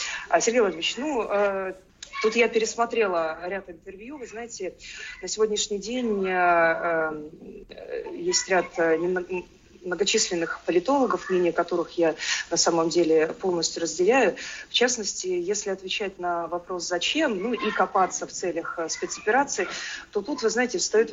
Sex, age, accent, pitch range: female, 20-39, native, 175-240 Hz